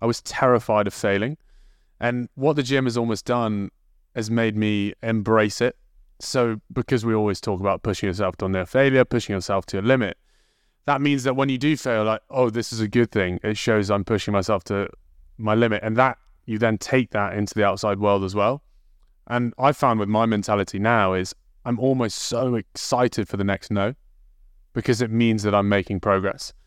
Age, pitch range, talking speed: 20-39, 100-120 Hz, 200 wpm